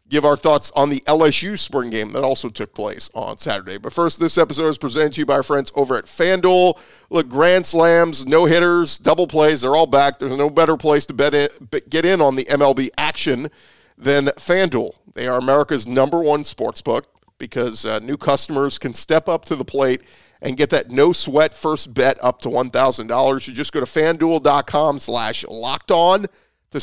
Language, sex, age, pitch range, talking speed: English, male, 40-59, 130-160 Hz, 195 wpm